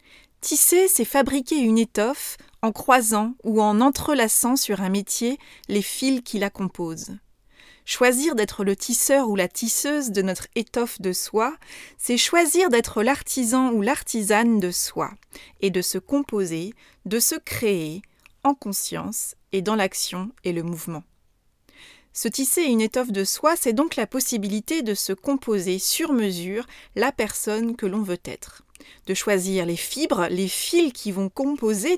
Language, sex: French, female